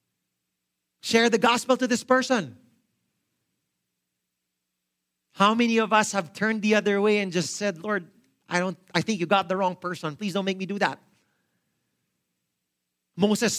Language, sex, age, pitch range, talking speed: English, male, 40-59, 185-240 Hz, 155 wpm